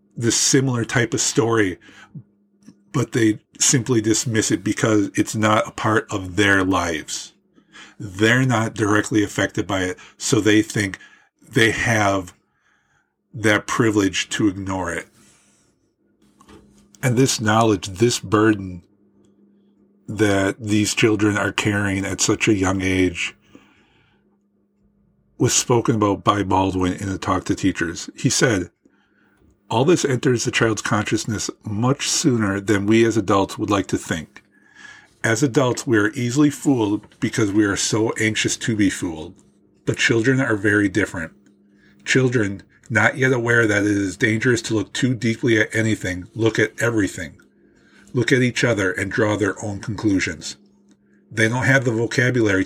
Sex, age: male, 50-69